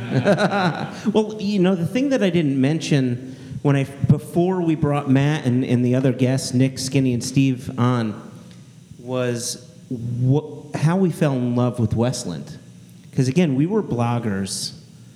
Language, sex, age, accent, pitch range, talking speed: English, male, 40-59, American, 115-145 Hz, 155 wpm